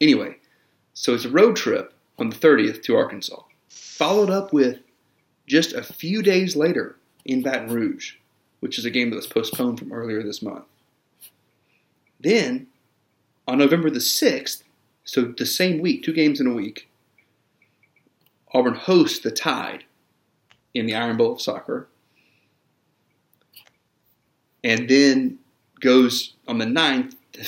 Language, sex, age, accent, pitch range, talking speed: English, male, 30-49, American, 115-160 Hz, 140 wpm